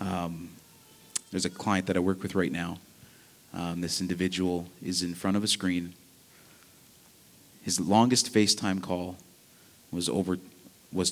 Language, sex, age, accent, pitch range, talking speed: English, male, 30-49, American, 90-105 Hz, 140 wpm